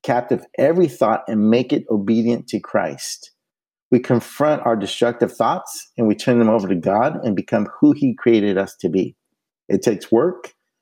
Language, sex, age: English, male, 50-69